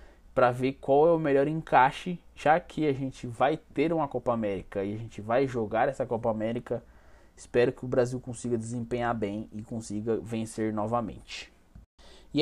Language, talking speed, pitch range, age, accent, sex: Portuguese, 175 wpm, 120-145 Hz, 20-39, Brazilian, male